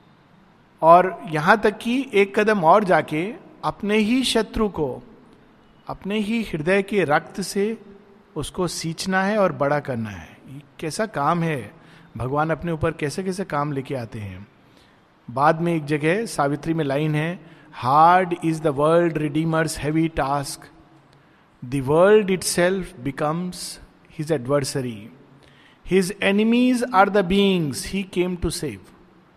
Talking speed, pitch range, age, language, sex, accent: 135 wpm, 145-195 Hz, 50-69, Hindi, male, native